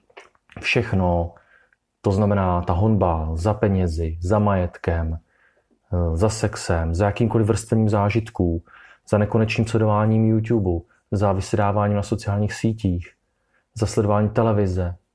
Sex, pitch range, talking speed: male, 90-110 Hz, 105 wpm